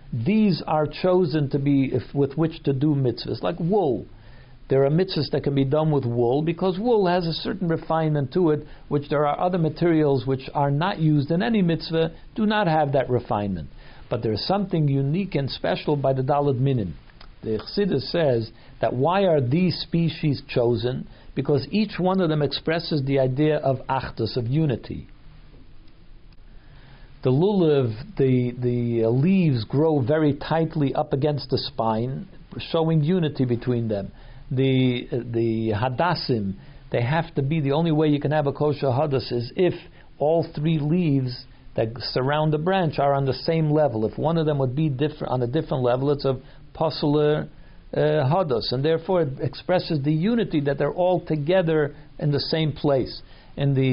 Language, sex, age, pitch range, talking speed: English, male, 60-79, 130-160 Hz, 175 wpm